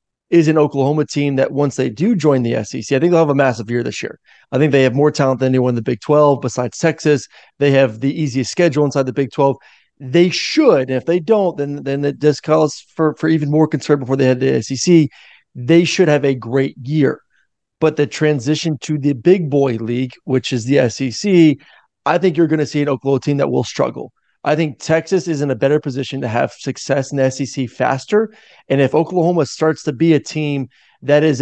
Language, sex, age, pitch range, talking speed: English, male, 30-49, 135-160 Hz, 225 wpm